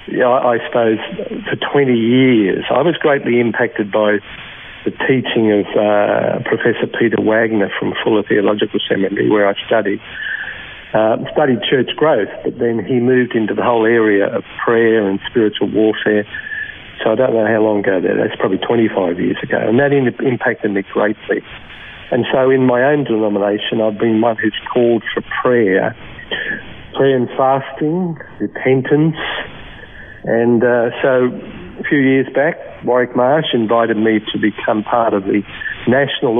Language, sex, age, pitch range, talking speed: English, male, 60-79, 105-130 Hz, 150 wpm